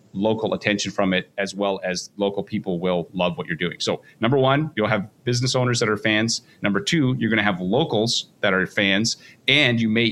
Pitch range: 100-120 Hz